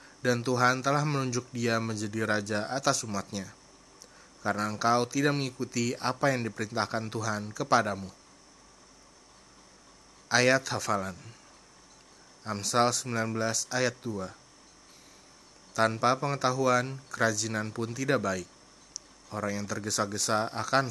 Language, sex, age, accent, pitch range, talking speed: Indonesian, male, 20-39, native, 110-135 Hz, 100 wpm